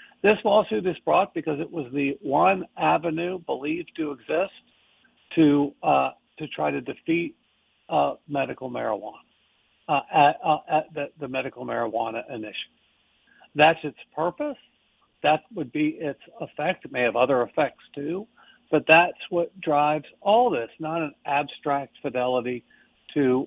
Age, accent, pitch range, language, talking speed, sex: 60-79, American, 145-180 Hz, English, 145 wpm, male